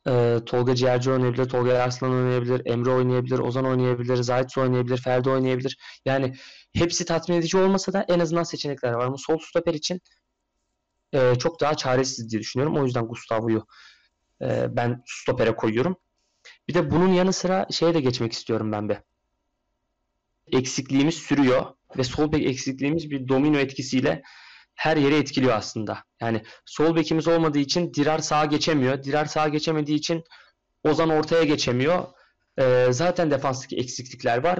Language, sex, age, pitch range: Turkish, male, 30-49, 125-165 Hz